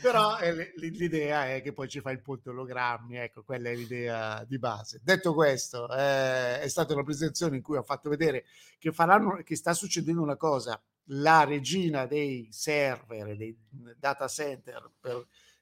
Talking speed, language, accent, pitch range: 160 wpm, Italian, native, 125-160 Hz